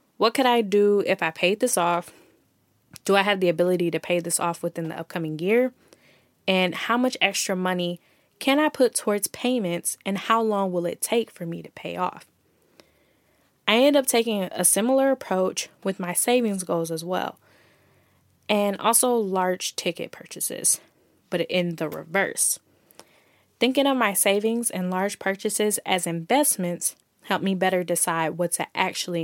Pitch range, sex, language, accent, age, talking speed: 175-220 Hz, female, English, American, 10-29, 165 wpm